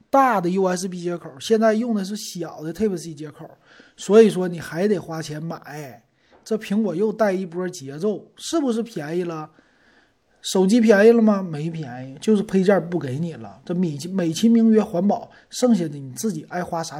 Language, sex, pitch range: Chinese, male, 160-215 Hz